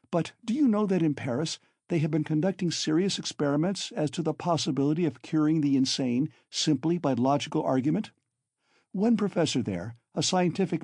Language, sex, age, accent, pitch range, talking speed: English, male, 60-79, American, 135-185 Hz, 165 wpm